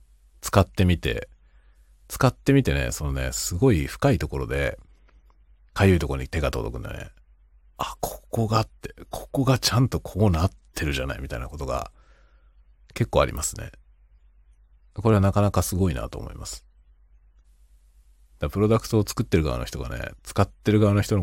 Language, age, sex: Japanese, 40-59, male